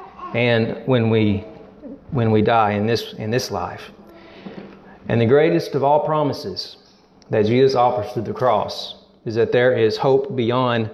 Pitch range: 125-155 Hz